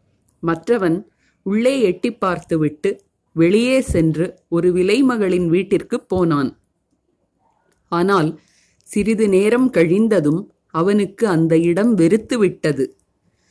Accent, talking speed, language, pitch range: native, 80 wpm, Tamil, 165-220 Hz